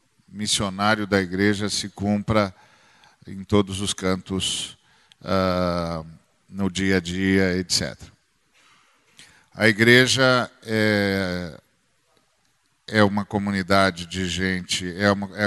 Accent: Brazilian